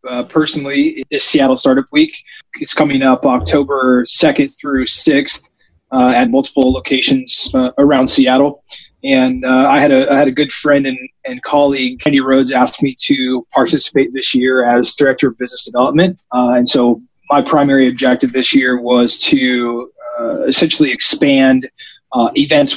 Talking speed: 165 wpm